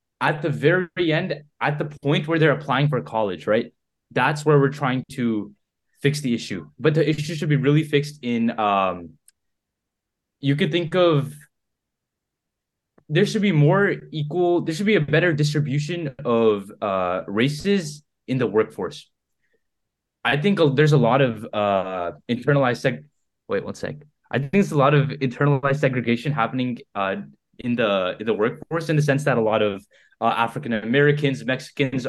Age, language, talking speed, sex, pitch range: 10-29, English, 165 wpm, male, 110-150 Hz